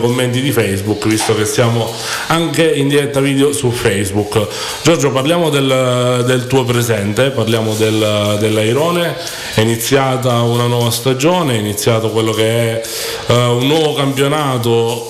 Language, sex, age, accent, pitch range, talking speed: Italian, male, 30-49, native, 110-130 Hz, 140 wpm